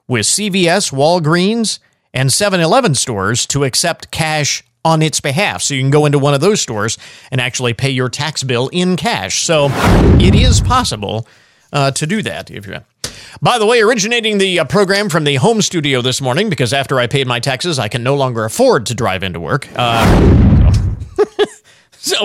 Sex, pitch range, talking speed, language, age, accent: male, 125-190 Hz, 190 wpm, English, 40-59, American